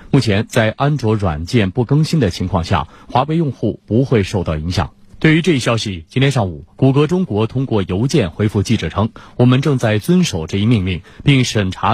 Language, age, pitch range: Chinese, 30-49, 95-135 Hz